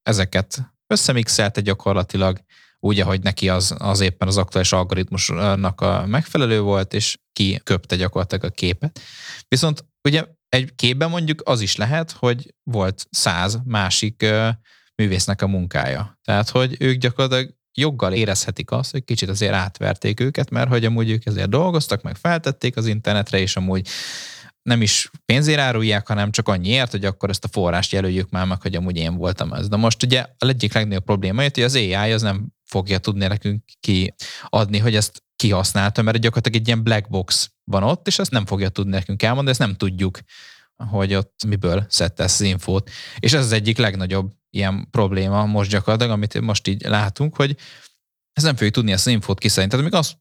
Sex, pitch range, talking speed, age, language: male, 95-125 Hz, 180 wpm, 20-39, Hungarian